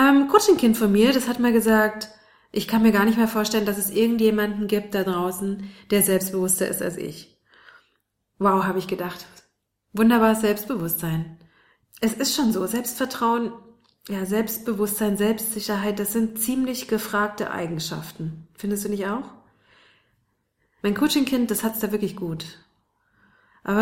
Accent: German